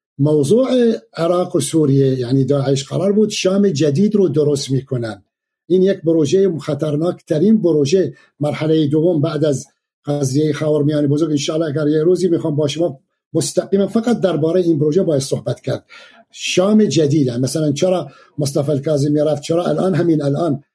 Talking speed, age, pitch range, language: 155 wpm, 50-69, 150-185 Hz, Persian